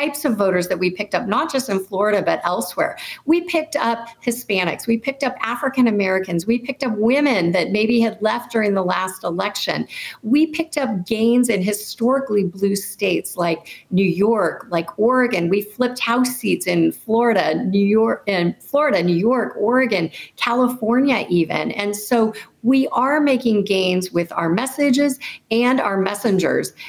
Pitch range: 195-255 Hz